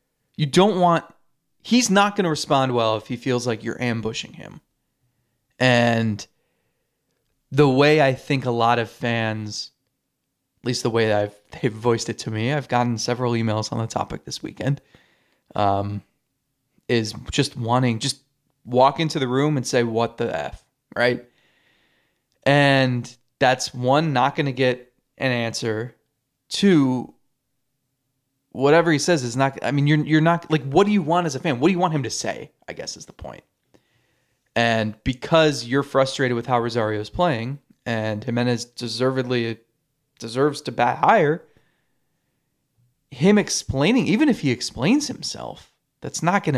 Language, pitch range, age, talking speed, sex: English, 120-150 Hz, 20-39, 160 wpm, male